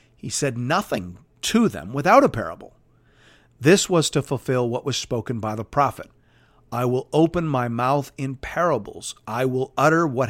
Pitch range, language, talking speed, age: 125-180 Hz, English, 170 wpm, 40-59